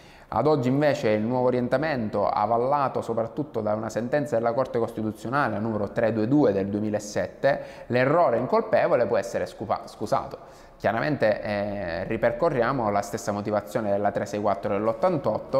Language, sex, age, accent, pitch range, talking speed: Italian, male, 20-39, native, 105-140 Hz, 120 wpm